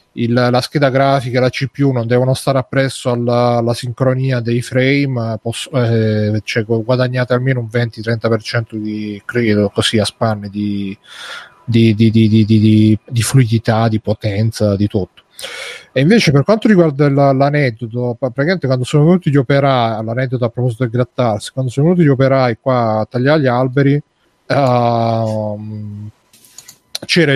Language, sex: Italian, male